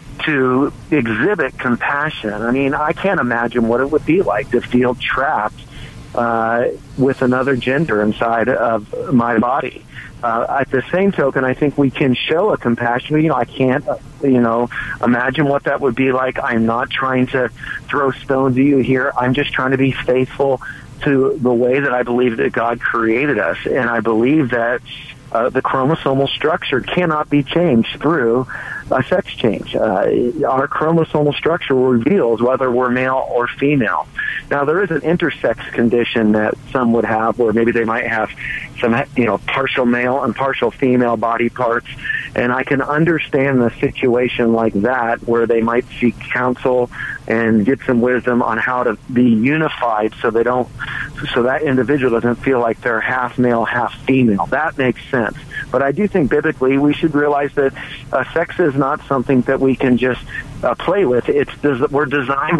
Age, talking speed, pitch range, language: 50-69, 180 wpm, 120-140 Hz, English